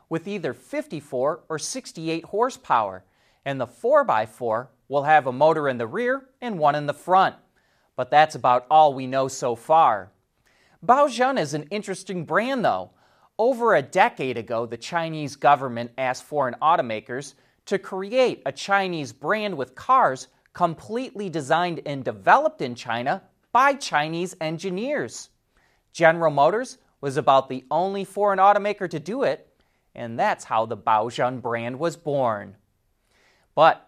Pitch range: 135-205 Hz